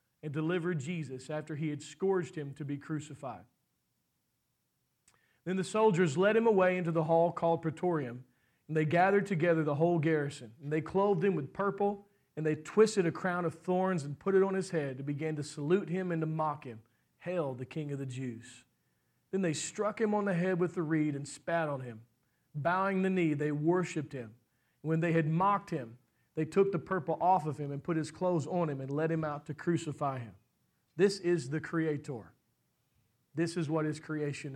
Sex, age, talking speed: male, 40-59, 205 wpm